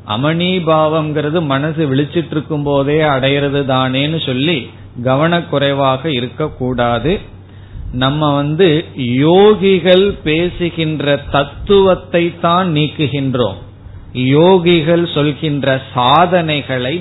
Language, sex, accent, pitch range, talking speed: Tamil, male, native, 125-165 Hz, 70 wpm